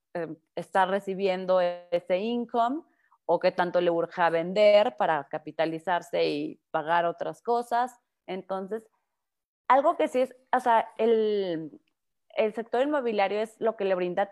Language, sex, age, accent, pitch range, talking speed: Spanish, female, 30-49, Mexican, 160-210 Hz, 140 wpm